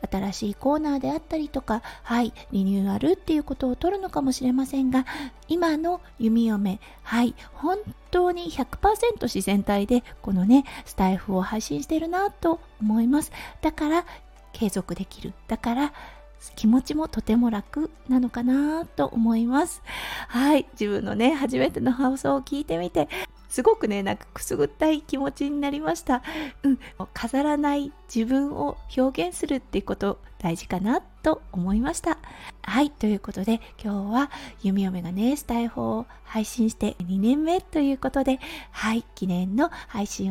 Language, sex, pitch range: Japanese, female, 220-305 Hz